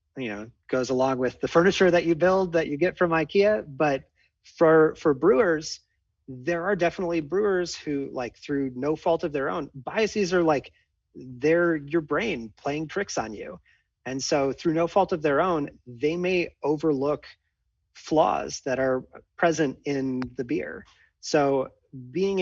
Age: 30-49